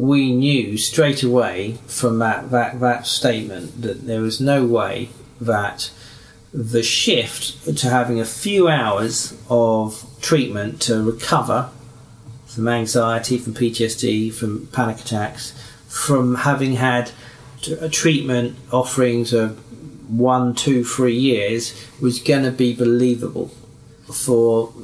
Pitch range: 115-140 Hz